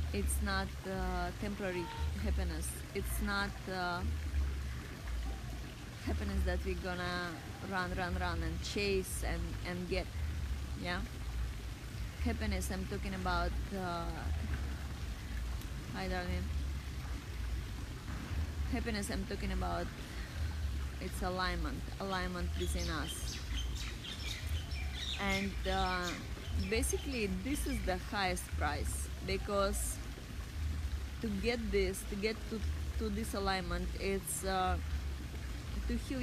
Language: English